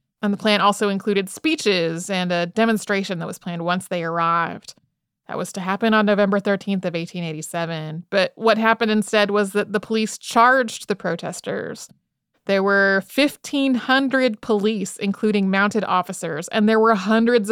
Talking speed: 160 wpm